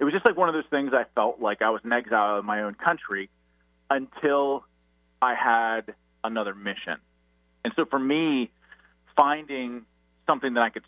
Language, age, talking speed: English, 30-49, 180 wpm